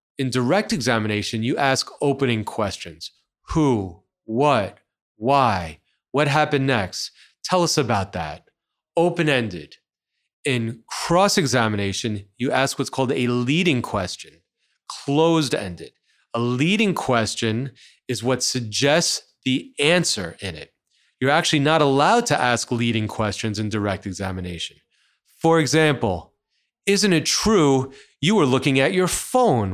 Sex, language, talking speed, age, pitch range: male, English, 120 wpm, 30-49, 115-160 Hz